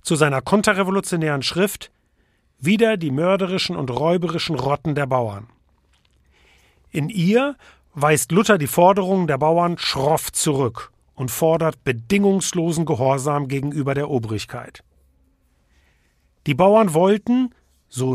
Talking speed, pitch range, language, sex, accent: 110 wpm, 115-195 Hz, German, male, German